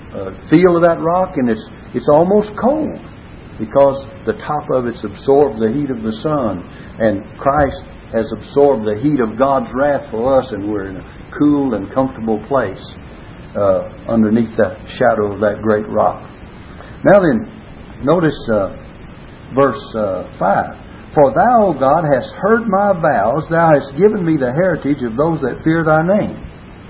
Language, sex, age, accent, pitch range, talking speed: English, male, 60-79, American, 115-165 Hz, 165 wpm